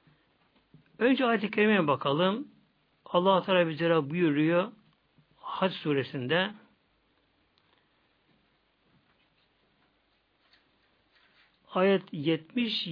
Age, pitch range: 60-79, 145-190 Hz